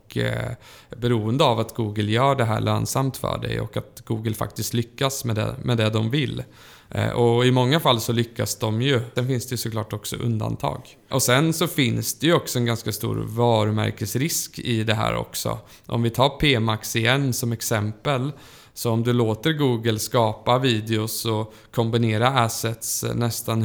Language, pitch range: Swedish, 110-130 Hz